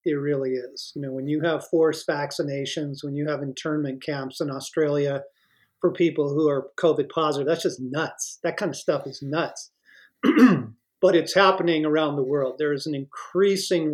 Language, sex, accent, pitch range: English, male, American, 140-175 Hz